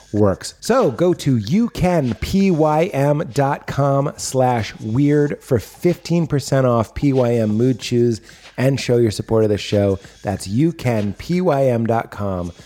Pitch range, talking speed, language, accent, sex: 115-170 Hz, 105 wpm, English, American, male